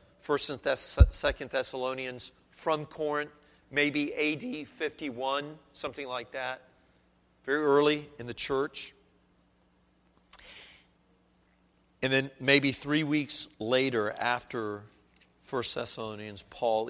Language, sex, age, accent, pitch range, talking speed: English, male, 40-59, American, 115-160 Hz, 95 wpm